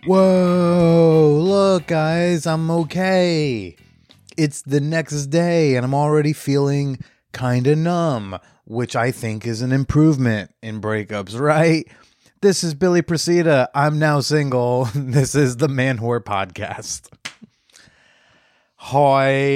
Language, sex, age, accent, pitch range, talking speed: English, male, 30-49, American, 110-145 Hz, 120 wpm